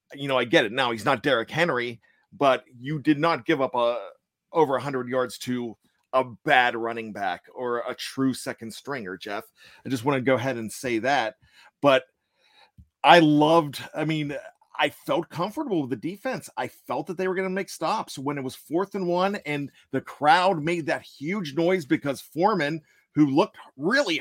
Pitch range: 135-185 Hz